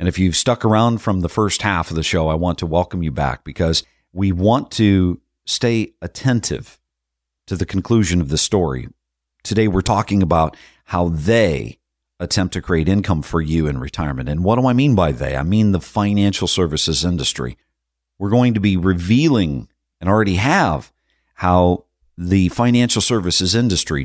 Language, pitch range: English, 75-100 Hz